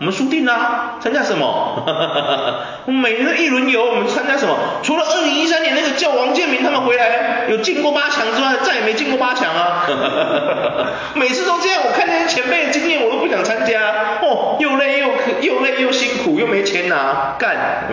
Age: 30-49